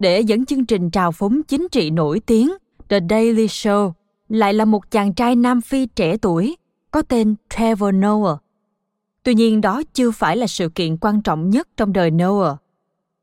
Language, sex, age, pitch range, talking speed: Vietnamese, female, 20-39, 185-225 Hz, 180 wpm